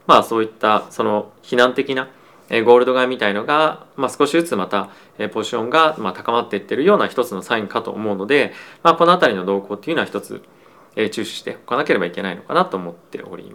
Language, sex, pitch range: Japanese, male, 105-150 Hz